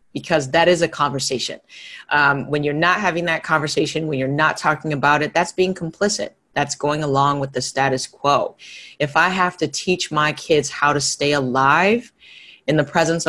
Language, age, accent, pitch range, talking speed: English, 30-49, American, 135-160 Hz, 190 wpm